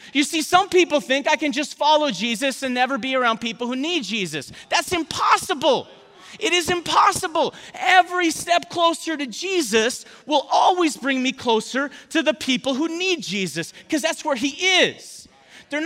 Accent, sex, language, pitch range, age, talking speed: American, male, English, 235-315 Hz, 30-49, 170 wpm